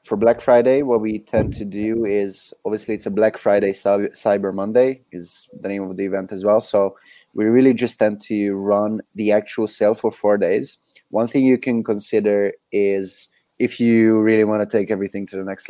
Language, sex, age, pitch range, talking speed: English, male, 20-39, 100-110 Hz, 205 wpm